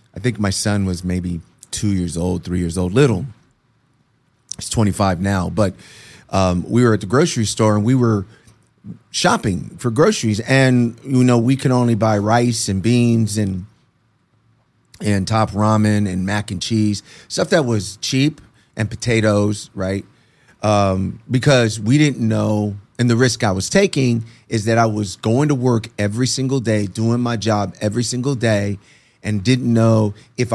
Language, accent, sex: English, American, male